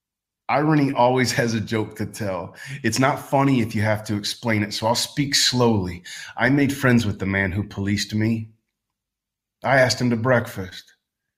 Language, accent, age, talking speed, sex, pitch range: English, American, 30-49, 180 wpm, male, 100-120 Hz